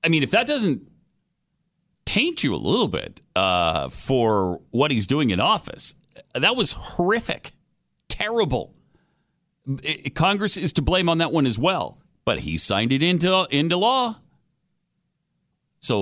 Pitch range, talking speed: 140-220 Hz, 145 wpm